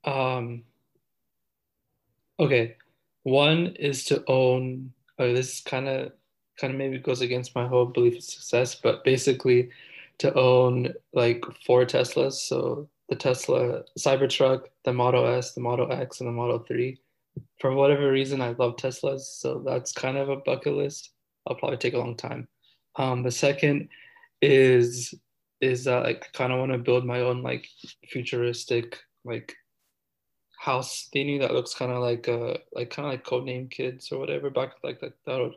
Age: 20-39